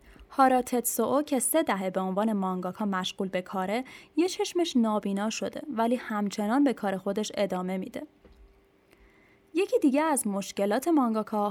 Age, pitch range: 10-29, 195-255 Hz